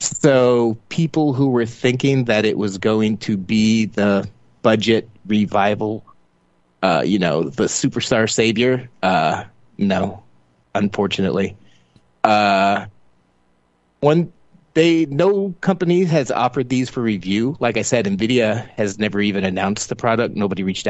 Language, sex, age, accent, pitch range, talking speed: English, male, 30-49, American, 100-135 Hz, 130 wpm